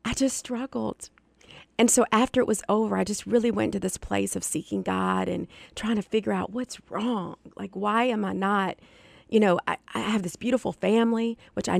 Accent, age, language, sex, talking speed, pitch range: American, 40-59, English, female, 210 wpm, 160-195 Hz